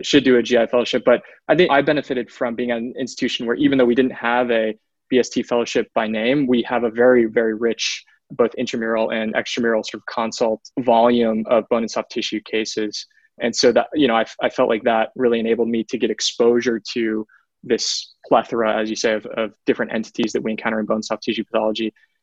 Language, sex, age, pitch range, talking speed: English, male, 20-39, 115-130 Hz, 215 wpm